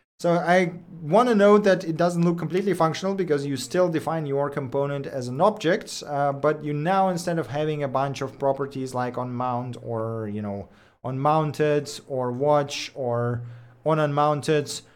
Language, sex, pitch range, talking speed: English, male, 135-175 Hz, 175 wpm